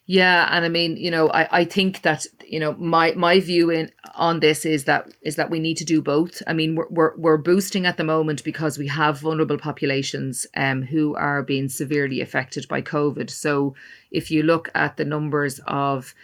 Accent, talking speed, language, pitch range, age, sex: Irish, 210 wpm, English, 145-165 Hz, 40-59, female